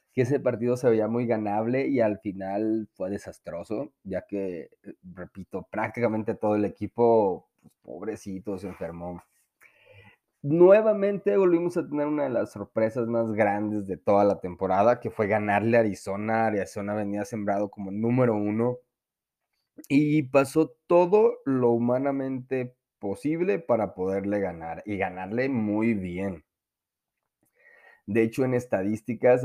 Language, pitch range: Spanish, 100-135 Hz